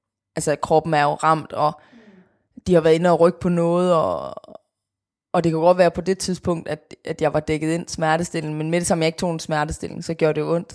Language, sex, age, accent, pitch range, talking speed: English, female, 20-39, Danish, 150-180 Hz, 245 wpm